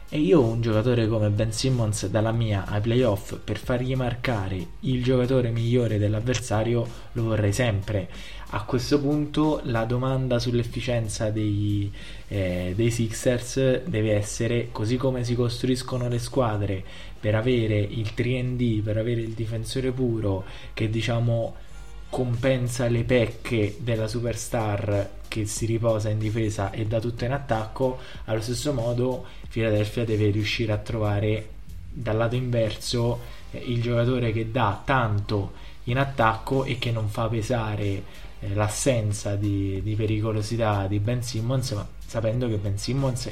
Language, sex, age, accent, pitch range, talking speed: Italian, male, 20-39, native, 105-125 Hz, 135 wpm